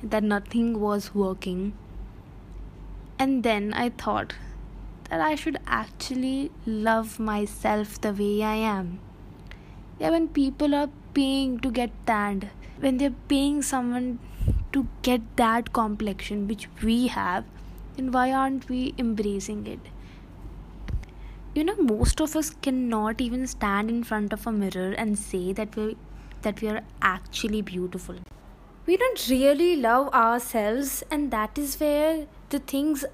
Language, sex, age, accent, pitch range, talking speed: English, female, 20-39, Indian, 215-290 Hz, 140 wpm